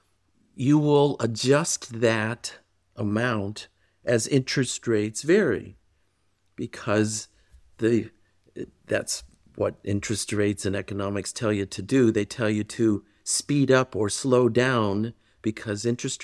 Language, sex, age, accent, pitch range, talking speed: English, male, 50-69, American, 105-135 Hz, 120 wpm